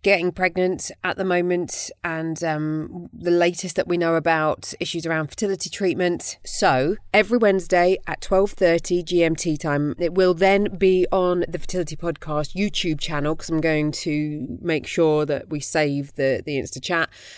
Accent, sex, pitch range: British, female, 140-175 Hz